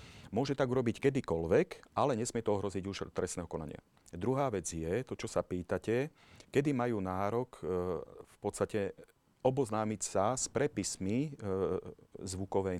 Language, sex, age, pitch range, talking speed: Slovak, male, 40-59, 95-120 Hz, 130 wpm